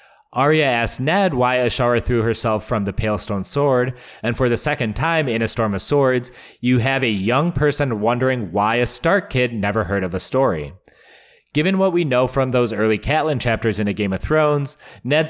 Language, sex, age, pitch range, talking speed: English, male, 20-39, 105-130 Hz, 205 wpm